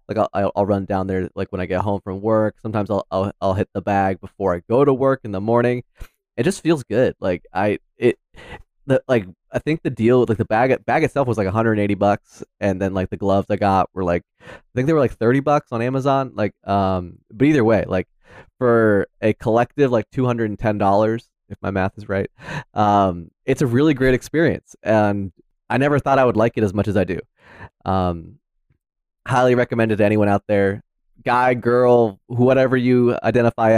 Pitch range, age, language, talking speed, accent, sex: 100-125 Hz, 20-39, English, 210 wpm, American, male